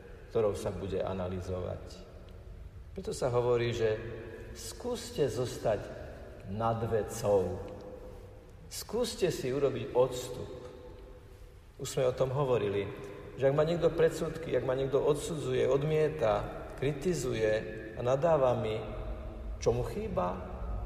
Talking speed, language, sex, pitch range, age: 110 wpm, Slovak, male, 100-150 Hz, 50-69